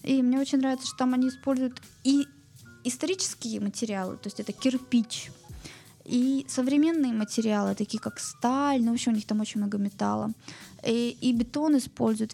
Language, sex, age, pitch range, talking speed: Russian, female, 20-39, 220-260 Hz, 165 wpm